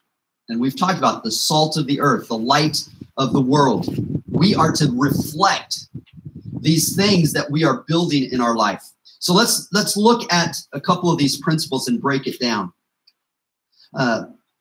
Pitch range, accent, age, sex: 130-185 Hz, American, 40-59, male